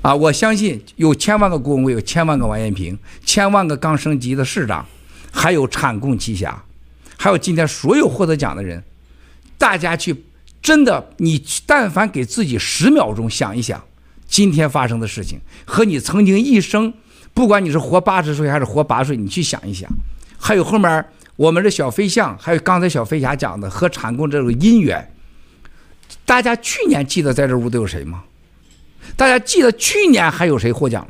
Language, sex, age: Chinese, male, 50-69